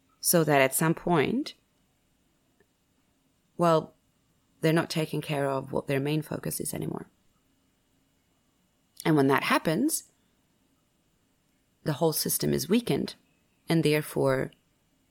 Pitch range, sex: 150-200 Hz, female